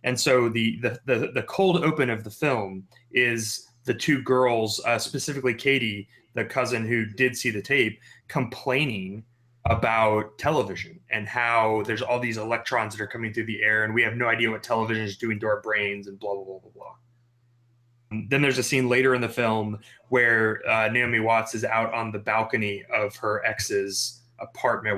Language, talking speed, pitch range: English, 190 wpm, 110-125 Hz